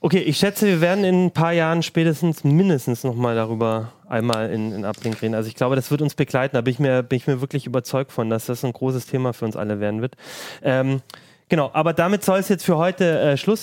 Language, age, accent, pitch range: German, 30-49, German, 125-155 Hz